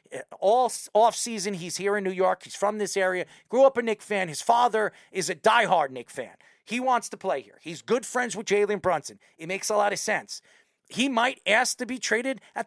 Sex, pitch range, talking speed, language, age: male, 175-235 Hz, 225 wpm, English, 40-59